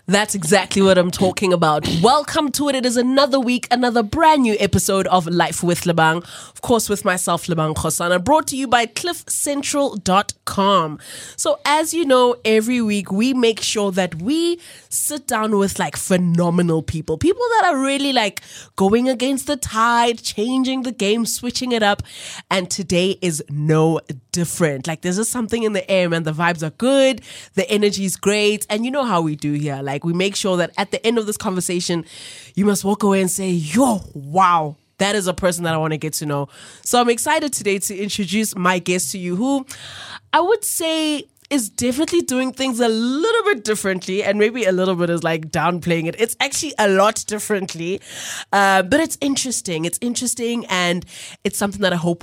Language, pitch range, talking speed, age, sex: English, 175-245 Hz, 195 wpm, 20-39, female